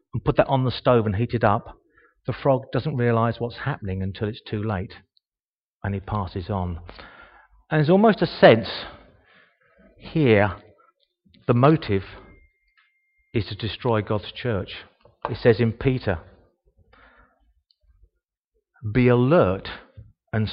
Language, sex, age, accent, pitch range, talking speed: English, male, 40-59, British, 100-135 Hz, 125 wpm